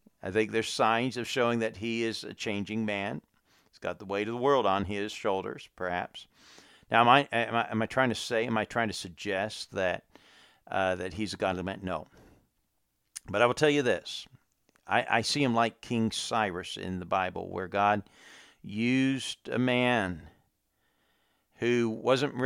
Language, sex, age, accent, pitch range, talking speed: English, male, 50-69, American, 95-120 Hz, 185 wpm